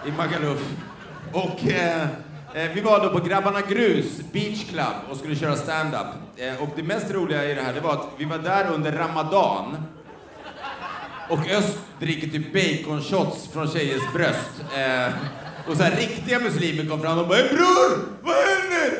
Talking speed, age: 175 wpm, 30-49